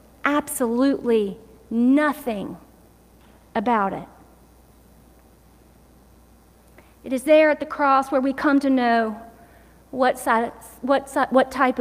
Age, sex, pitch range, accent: 40-59, female, 260-335 Hz, American